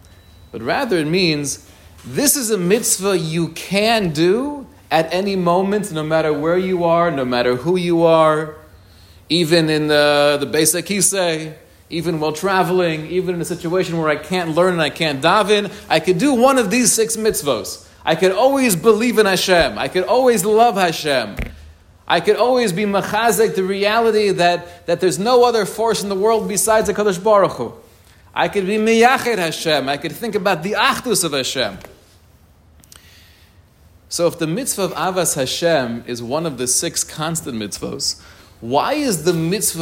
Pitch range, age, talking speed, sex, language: 140-205 Hz, 30-49, 175 wpm, male, English